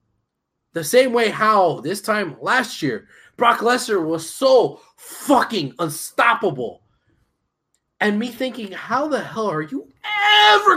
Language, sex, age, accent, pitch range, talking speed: English, male, 20-39, American, 210-325 Hz, 130 wpm